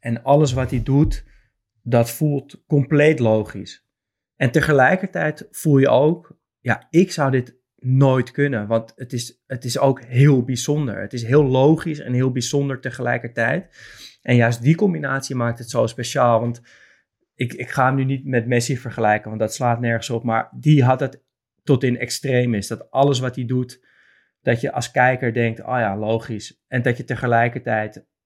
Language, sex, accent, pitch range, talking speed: Dutch, male, Dutch, 115-135 Hz, 175 wpm